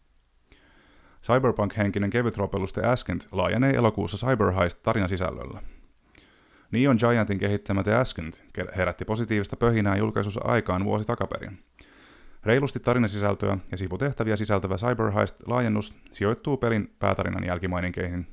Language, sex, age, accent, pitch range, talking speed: Finnish, male, 30-49, native, 90-115 Hz, 95 wpm